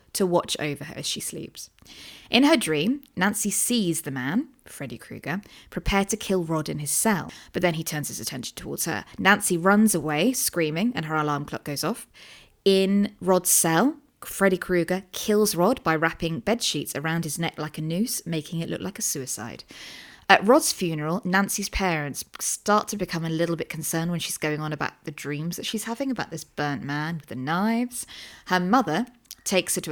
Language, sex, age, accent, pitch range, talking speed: English, female, 20-39, British, 160-220 Hz, 195 wpm